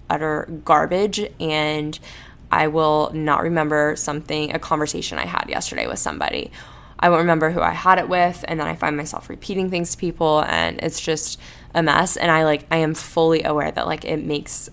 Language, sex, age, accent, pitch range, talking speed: English, female, 10-29, American, 150-175 Hz, 195 wpm